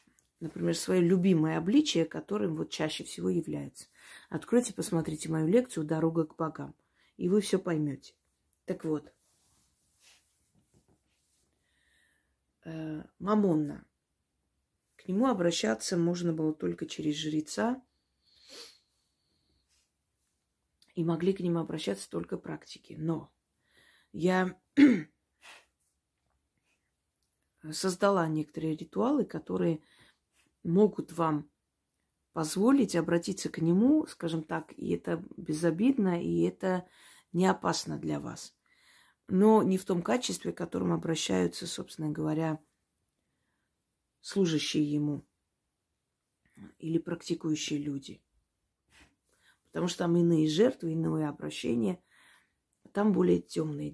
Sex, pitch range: female, 110-185 Hz